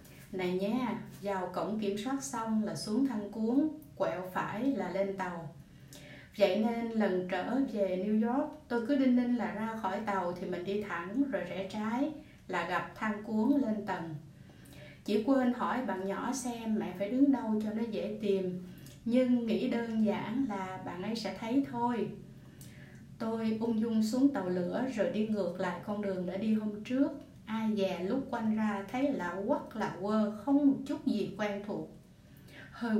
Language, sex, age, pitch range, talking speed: Vietnamese, female, 20-39, 195-240 Hz, 185 wpm